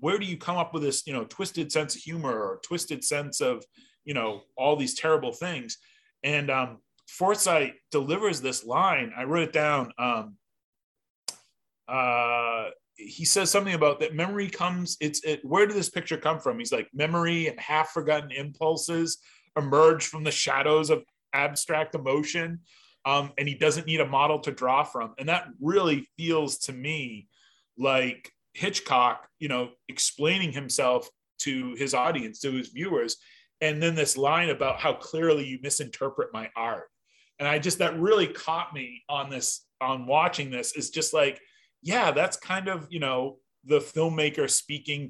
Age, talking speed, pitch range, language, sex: 30-49, 170 wpm, 135-170 Hz, English, male